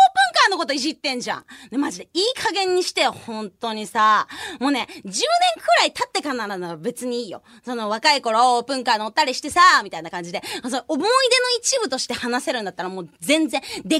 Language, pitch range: Japanese, 270-405 Hz